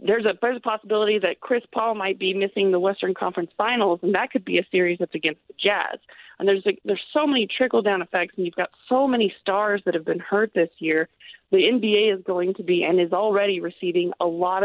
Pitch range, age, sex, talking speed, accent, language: 175-210 Hz, 30-49, female, 240 wpm, American, English